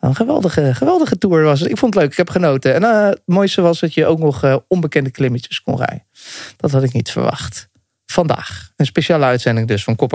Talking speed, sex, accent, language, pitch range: 230 wpm, male, Dutch, Dutch, 130-175 Hz